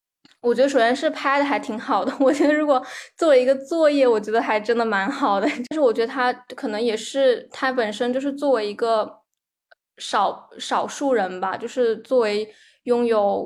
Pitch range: 210-255 Hz